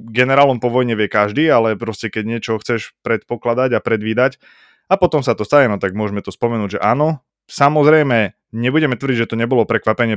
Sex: male